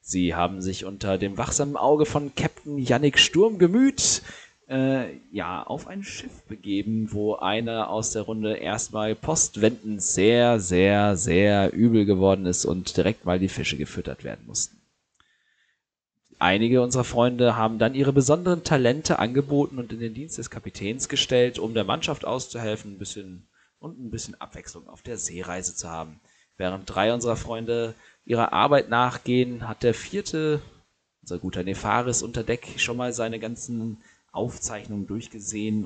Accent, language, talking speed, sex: German, German, 150 wpm, male